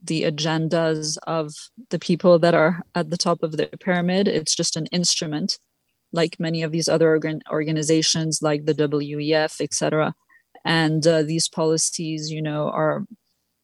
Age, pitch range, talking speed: 20-39, 160-175 Hz, 155 wpm